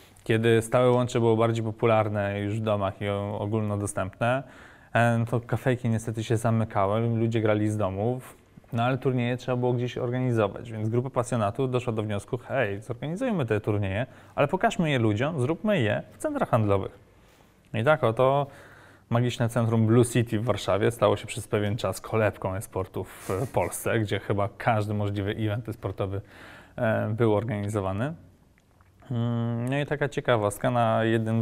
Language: English